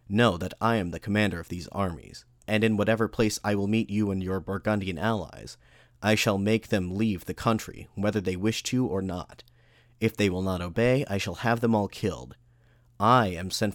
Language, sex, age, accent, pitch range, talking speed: English, male, 30-49, American, 95-115 Hz, 210 wpm